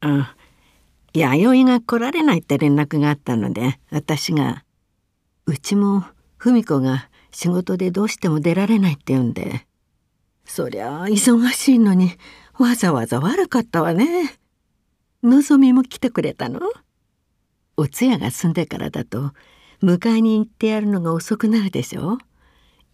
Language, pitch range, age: Japanese, 145-230 Hz, 60-79